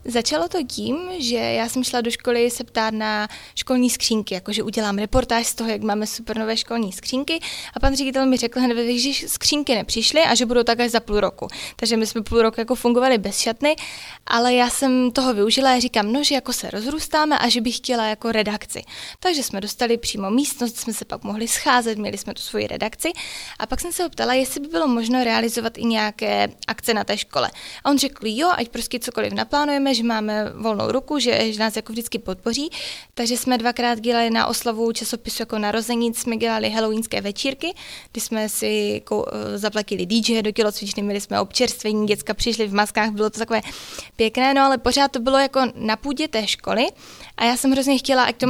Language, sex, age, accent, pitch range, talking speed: Czech, female, 20-39, native, 220-260 Hz, 205 wpm